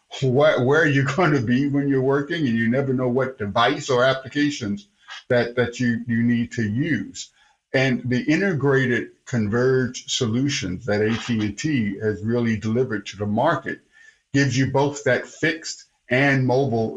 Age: 50-69